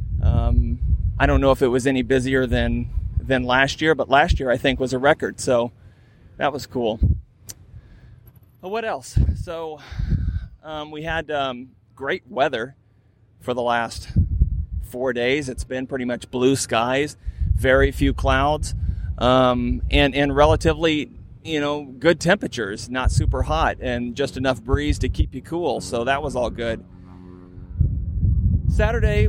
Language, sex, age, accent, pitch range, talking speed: English, male, 30-49, American, 90-130 Hz, 150 wpm